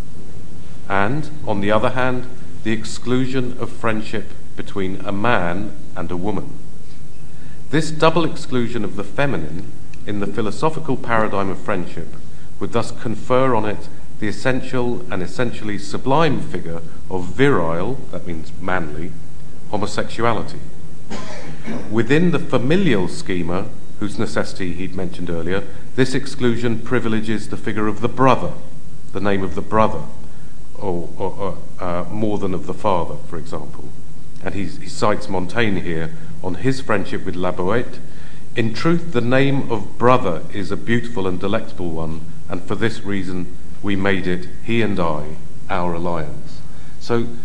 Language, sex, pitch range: English, male, 90-125 Hz